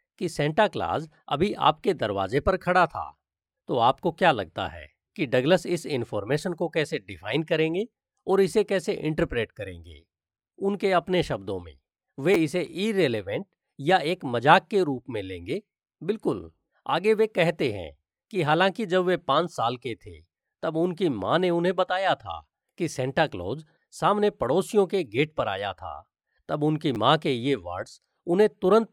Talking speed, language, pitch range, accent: 165 wpm, Hindi, 130-185 Hz, native